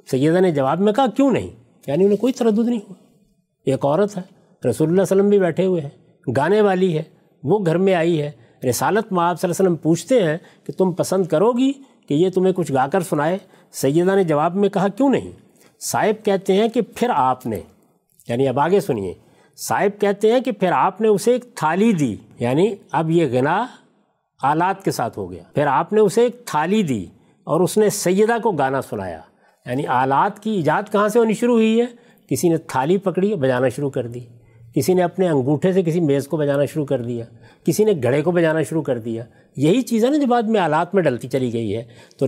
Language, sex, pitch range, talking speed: Urdu, male, 145-205 Hz, 220 wpm